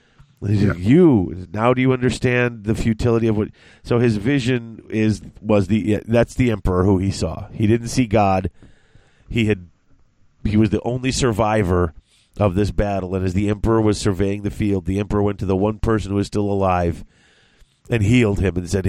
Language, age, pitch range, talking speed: English, 30-49, 100-115 Hz, 195 wpm